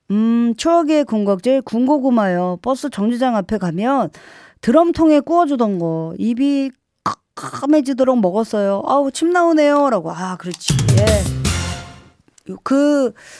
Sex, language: female, Korean